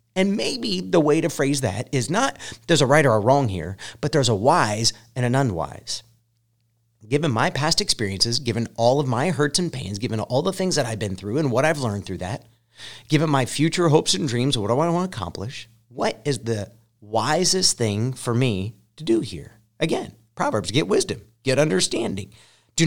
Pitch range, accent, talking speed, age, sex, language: 110-140 Hz, American, 200 wpm, 40-59, male, English